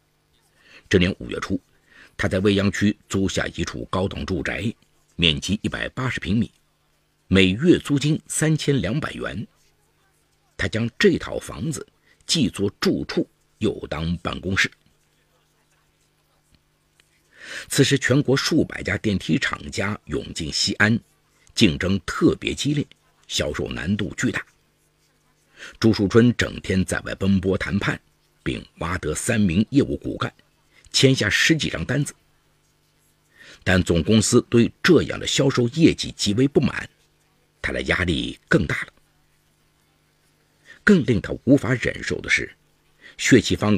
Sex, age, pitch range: male, 50-69, 85-125 Hz